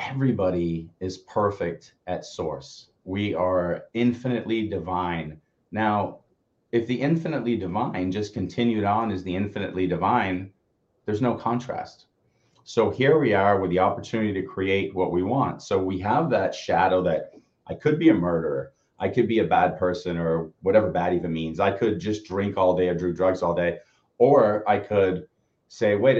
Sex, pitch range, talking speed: male, 90-115 Hz, 170 wpm